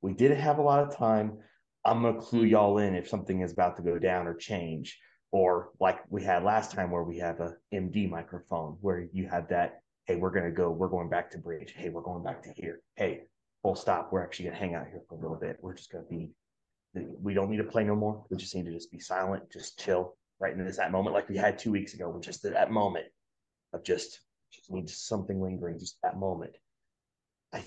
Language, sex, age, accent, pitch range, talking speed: English, male, 30-49, American, 90-115 Hz, 240 wpm